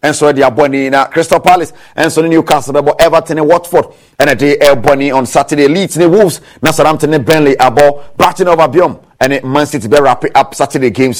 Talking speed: 255 wpm